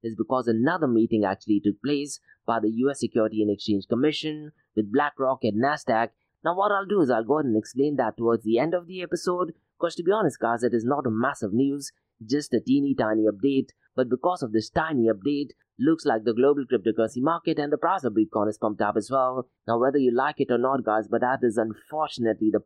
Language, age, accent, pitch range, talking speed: English, 30-49, Indian, 110-145 Hz, 230 wpm